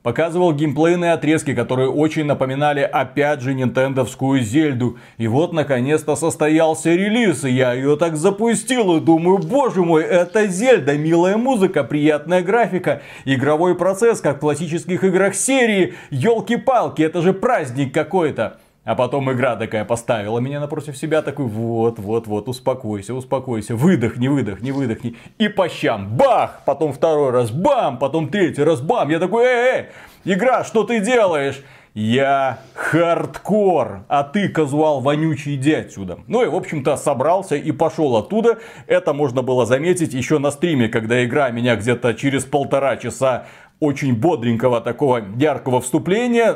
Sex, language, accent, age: male, Russian, native, 30-49